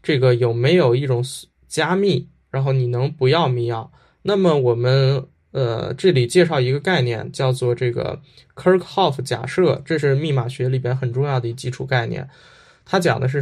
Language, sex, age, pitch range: Chinese, male, 10-29, 125-160 Hz